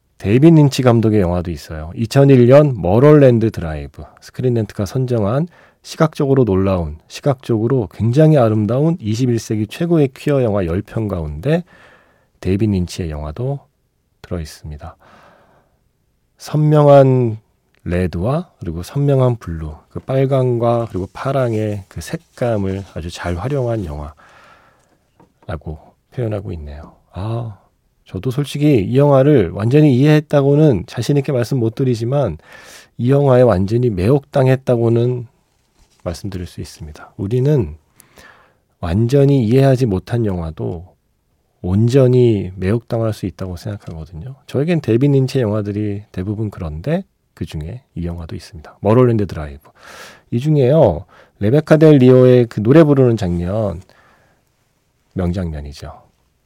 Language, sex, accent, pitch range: Korean, male, native, 90-135 Hz